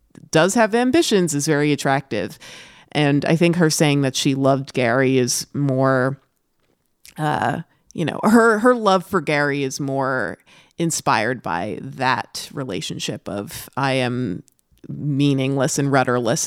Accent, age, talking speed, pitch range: American, 30-49, 135 wpm, 135-165 Hz